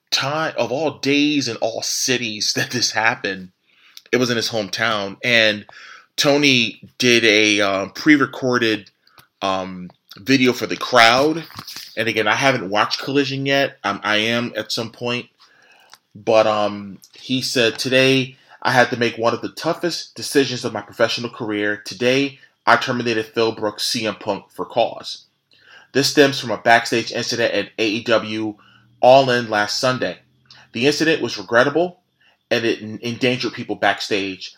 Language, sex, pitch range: English, male, 105-130 Hz